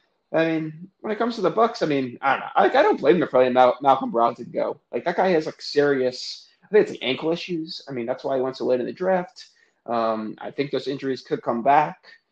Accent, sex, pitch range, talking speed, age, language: American, male, 120-170 Hz, 270 wpm, 20-39, English